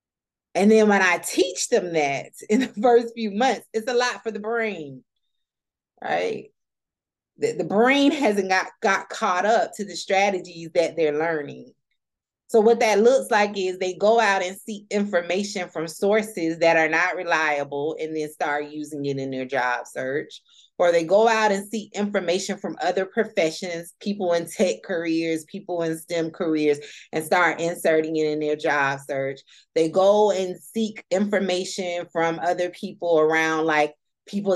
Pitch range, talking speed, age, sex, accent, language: 160-210 Hz, 170 wpm, 30-49, female, American, English